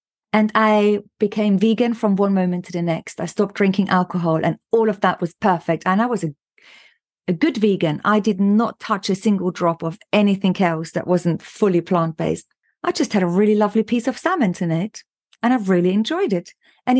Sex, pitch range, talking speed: female, 185-235 Hz, 205 wpm